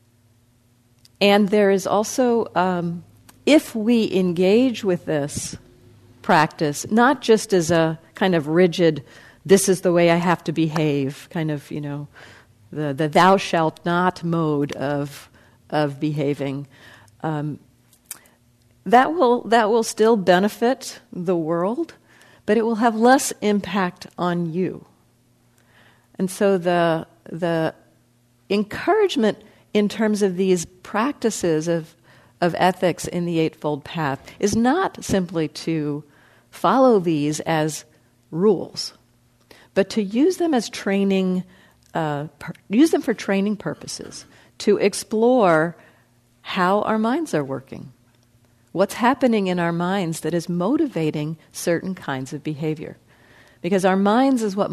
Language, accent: English, American